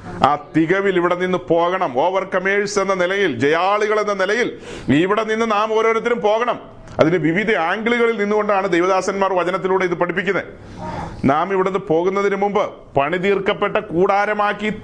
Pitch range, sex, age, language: 180-225 Hz, male, 40-59, Malayalam